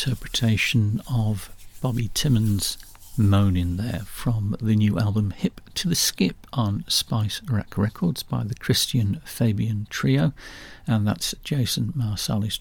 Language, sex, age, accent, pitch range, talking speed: English, male, 50-69, British, 105-130 Hz, 130 wpm